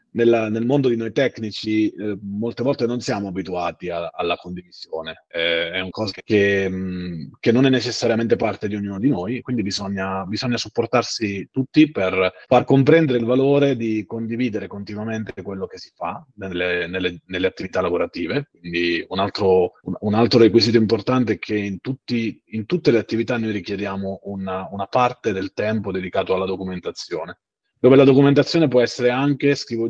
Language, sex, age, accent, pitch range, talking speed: Italian, male, 30-49, native, 100-125 Hz, 165 wpm